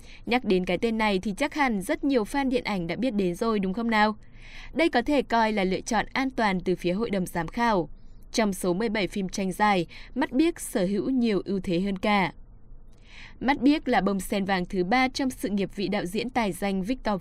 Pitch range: 185-245 Hz